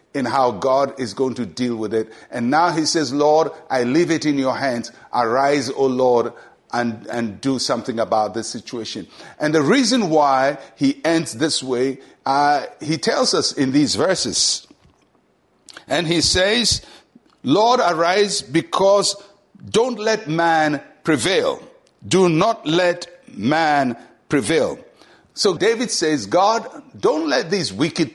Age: 60-79